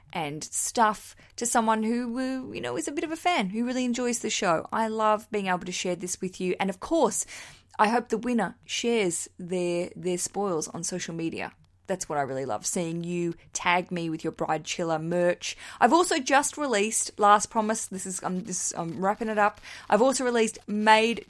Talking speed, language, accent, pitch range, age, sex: 210 wpm, English, Australian, 180-225 Hz, 20-39, female